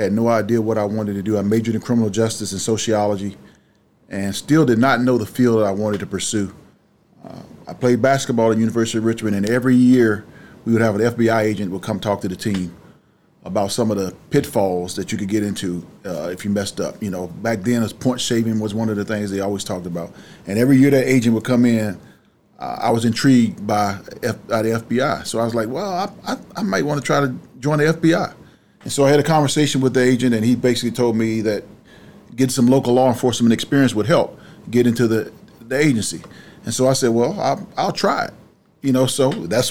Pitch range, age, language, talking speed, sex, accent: 105-125 Hz, 30-49, English, 235 wpm, male, American